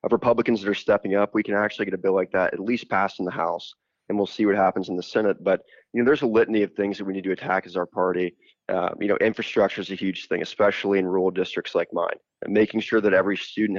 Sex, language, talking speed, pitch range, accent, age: male, English, 275 wpm, 95-110 Hz, American, 20-39